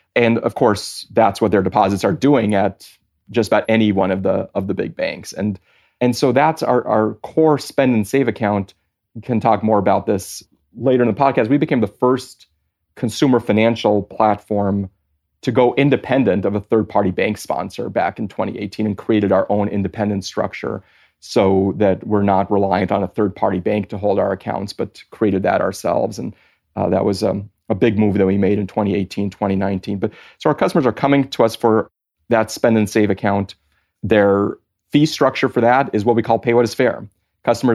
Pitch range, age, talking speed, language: 100-120 Hz, 30-49, 200 wpm, English